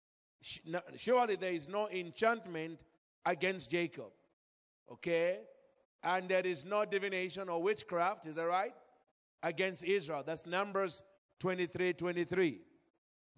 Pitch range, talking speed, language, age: 175-215 Hz, 110 wpm, English, 50-69